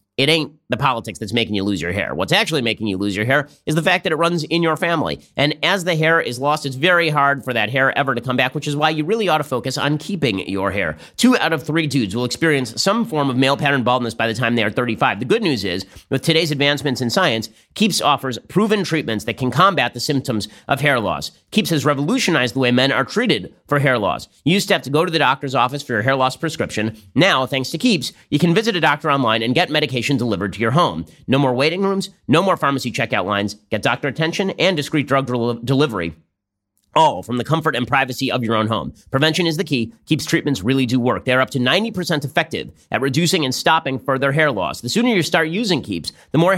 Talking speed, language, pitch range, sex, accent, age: 245 wpm, English, 120-160 Hz, male, American, 30-49